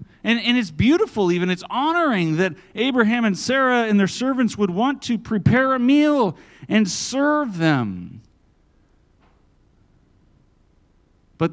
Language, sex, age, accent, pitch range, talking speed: English, male, 40-59, American, 150-230 Hz, 125 wpm